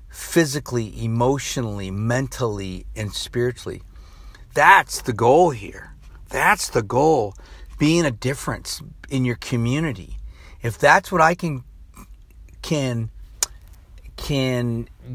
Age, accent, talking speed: 50-69, American, 105 wpm